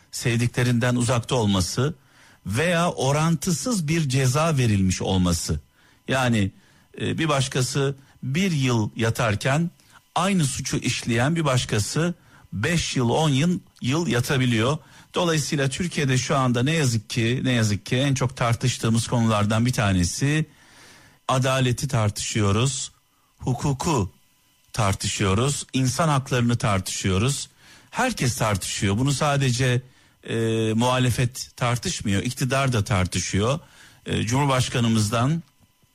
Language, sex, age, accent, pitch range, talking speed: Turkish, male, 50-69, native, 110-140 Hz, 100 wpm